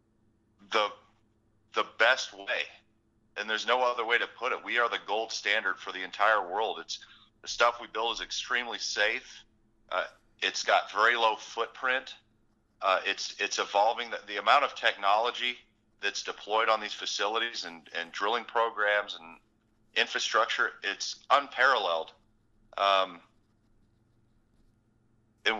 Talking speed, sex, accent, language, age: 140 wpm, male, American, English, 40-59